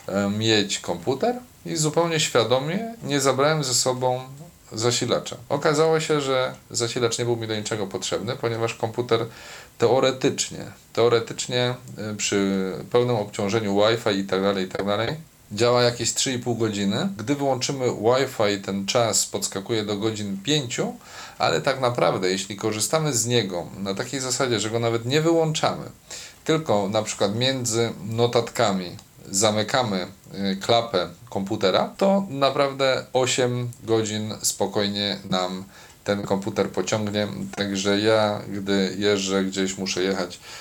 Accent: native